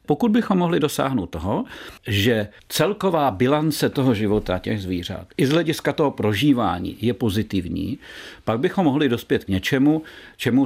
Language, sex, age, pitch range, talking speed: Czech, male, 50-69, 110-150 Hz, 145 wpm